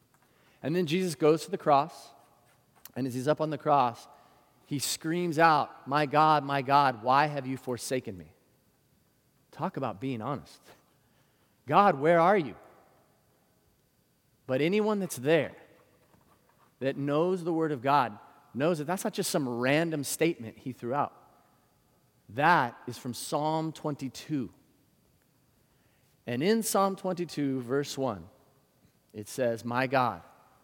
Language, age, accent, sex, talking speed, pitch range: English, 40-59, American, male, 135 wpm, 130-160 Hz